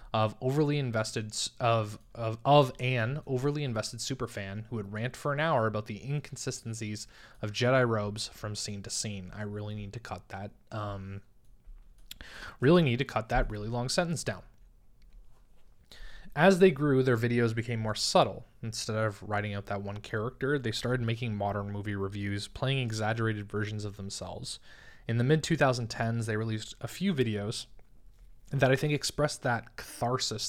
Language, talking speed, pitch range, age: English, 165 wpm, 105-125 Hz, 20-39